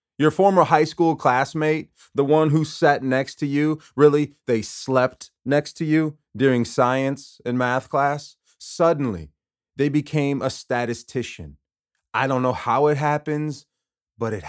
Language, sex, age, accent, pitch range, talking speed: English, male, 30-49, American, 110-140 Hz, 150 wpm